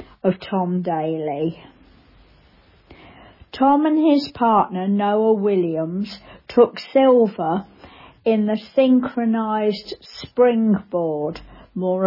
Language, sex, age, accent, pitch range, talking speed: English, female, 50-69, British, 190-255 Hz, 80 wpm